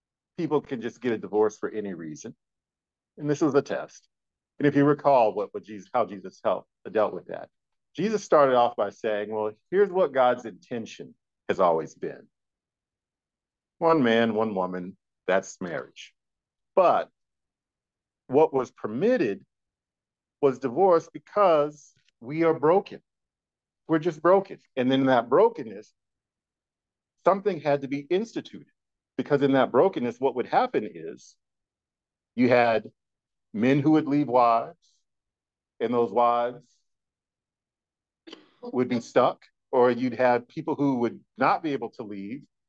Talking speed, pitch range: 140 wpm, 120-150 Hz